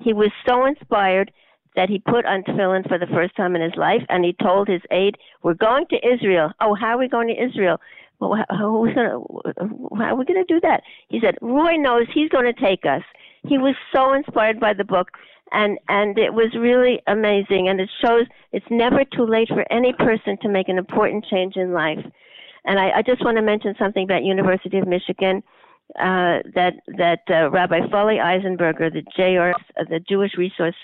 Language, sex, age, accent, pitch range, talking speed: English, female, 60-79, American, 180-235 Hz, 200 wpm